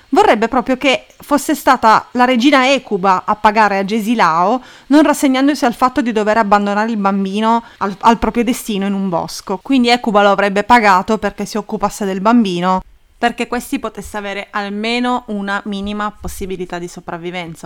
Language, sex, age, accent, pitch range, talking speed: English, female, 30-49, Italian, 190-240 Hz, 165 wpm